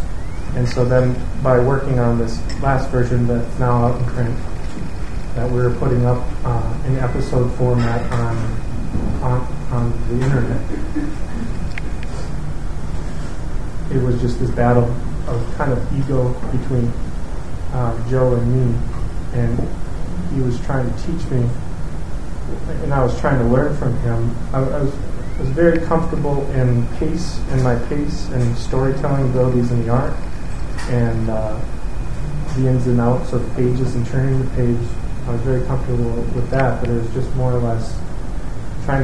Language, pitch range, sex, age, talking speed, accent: English, 120-130 Hz, male, 30-49, 150 wpm, American